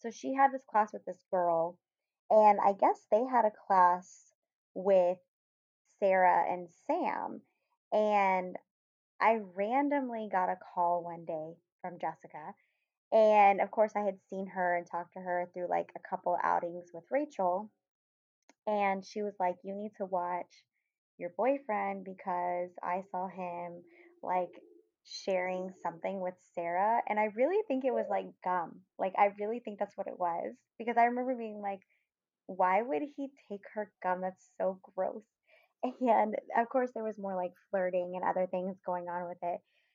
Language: English